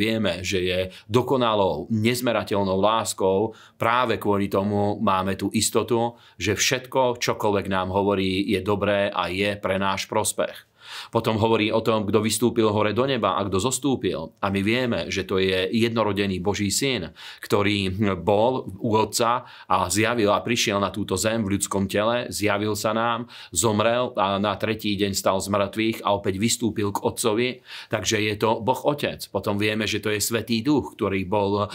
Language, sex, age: Slovak, male, 40-59